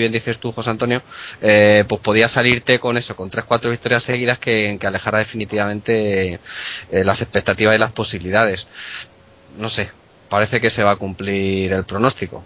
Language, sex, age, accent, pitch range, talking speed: Spanish, male, 20-39, Spanish, 100-120 Hz, 175 wpm